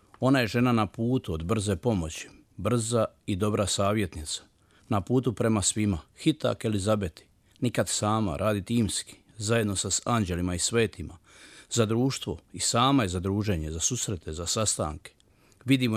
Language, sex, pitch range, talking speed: Croatian, male, 95-120 Hz, 150 wpm